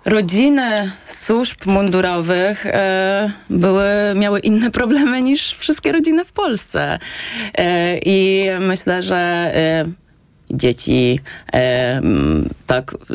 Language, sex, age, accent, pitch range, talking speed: Polish, female, 20-39, native, 150-195 Hz, 80 wpm